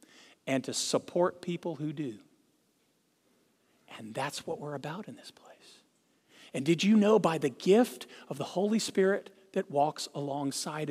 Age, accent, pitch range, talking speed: 50-69, American, 150-210 Hz, 155 wpm